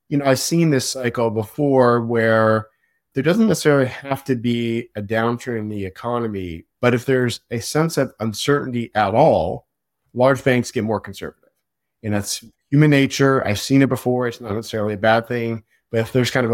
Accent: American